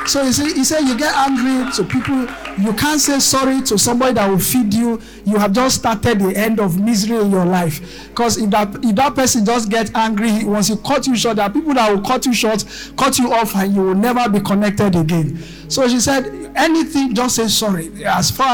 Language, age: English, 50-69